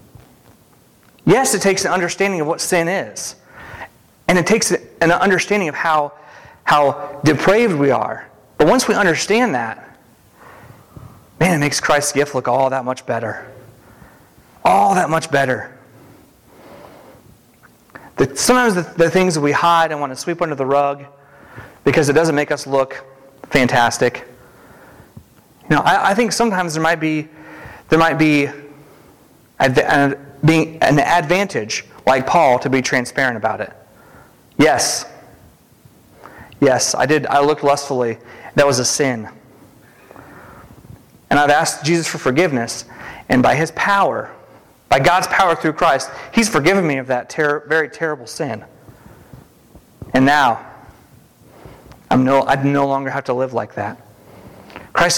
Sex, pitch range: male, 135-165 Hz